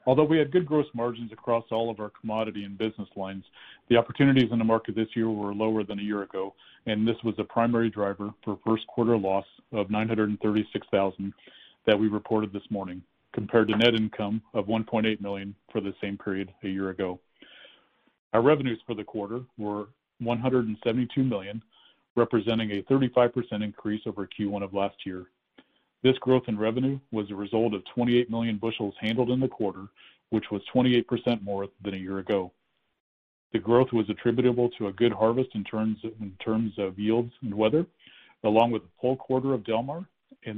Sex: male